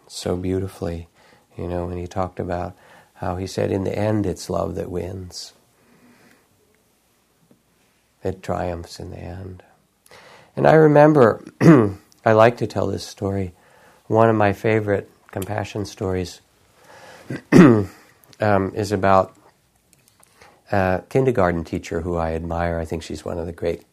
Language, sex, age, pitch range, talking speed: English, male, 50-69, 90-105 Hz, 135 wpm